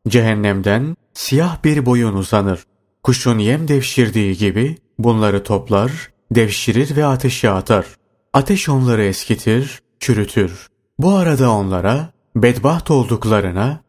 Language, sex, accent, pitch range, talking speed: Turkish, male, native, 105-135 Hz, 105 wpm